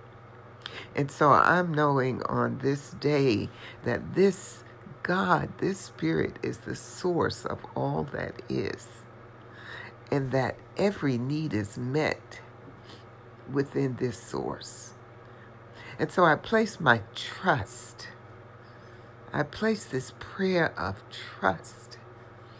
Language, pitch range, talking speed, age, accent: English, 115-145 Hz, 105 wpm, 60-79, American